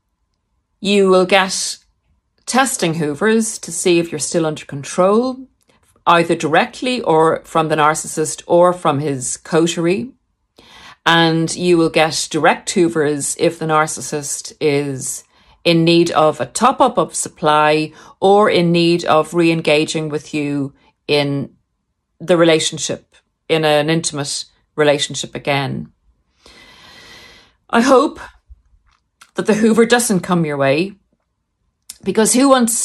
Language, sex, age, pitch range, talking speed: English, female, 40-59, 155-190 Hz, 120 wpm